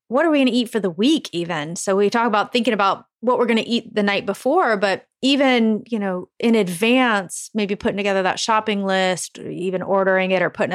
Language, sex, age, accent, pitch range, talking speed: English, female, 30-49, American, 190-235 Hz, 230 wpm